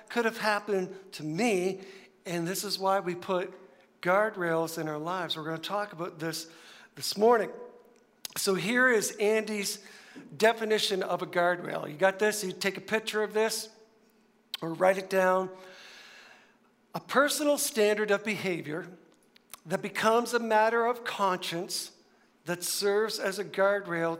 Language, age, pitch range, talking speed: English, 60-79, 175-220 Hz, 150 wpm